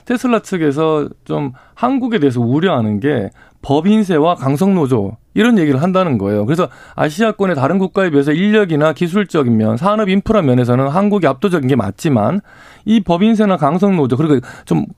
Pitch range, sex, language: 130-210 Hz, male, Korean